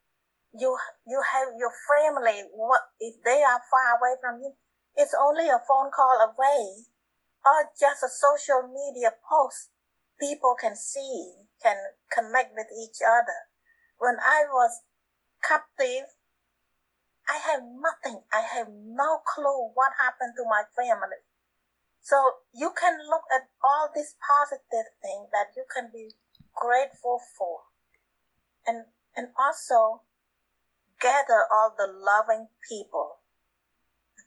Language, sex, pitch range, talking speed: English, female, 220-285 Hz, 125 wpm